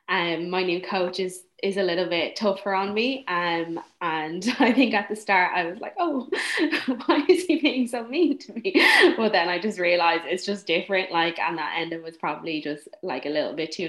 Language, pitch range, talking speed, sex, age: English, 150-195 Hz, 225 wpm, female, 20-39